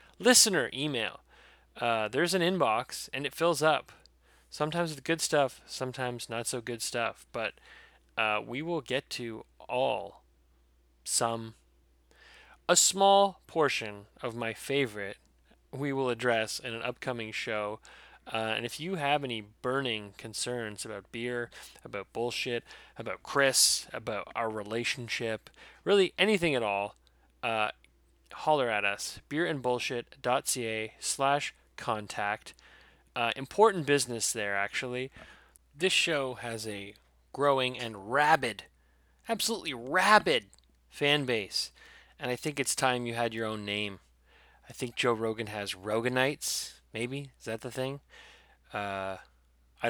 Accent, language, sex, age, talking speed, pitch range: American, English, male, 20-39, 125 wpm, 105-135 Hz